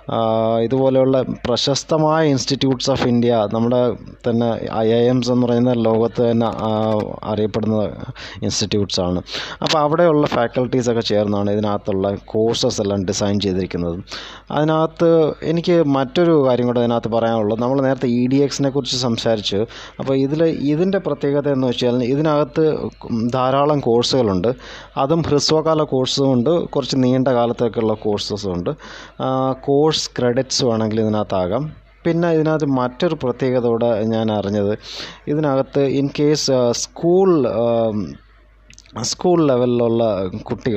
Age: 20-39